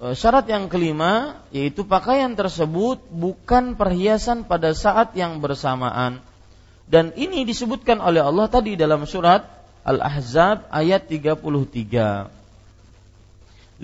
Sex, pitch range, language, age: male, 130-210 Hz, Malay, 40-59